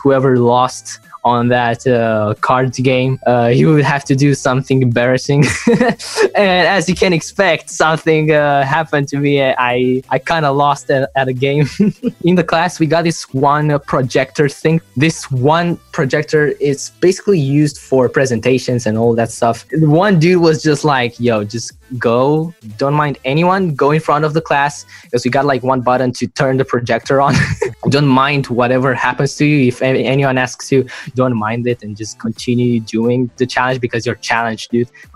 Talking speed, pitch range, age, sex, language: 180 wpm, 125-155 Hz, 10-29, male, English